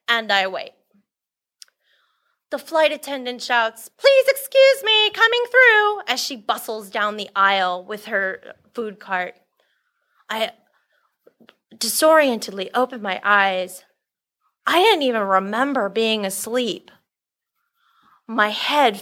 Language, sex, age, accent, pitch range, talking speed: English, female, 30-49, American, 215-315 Hz, 110 wpm